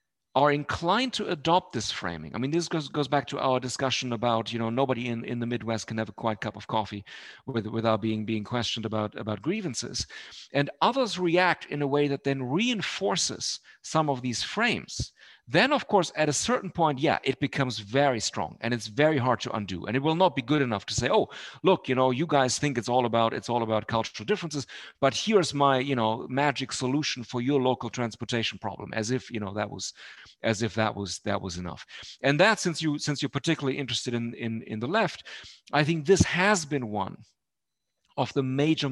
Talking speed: 215 wpm